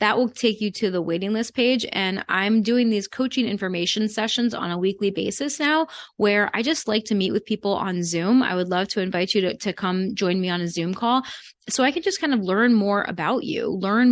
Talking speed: 240 wpm